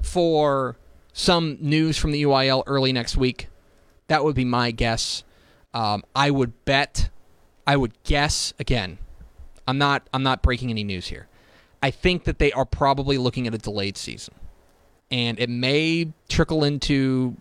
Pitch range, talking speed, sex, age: 115-155 Hz, 160 wpm, male, 30-49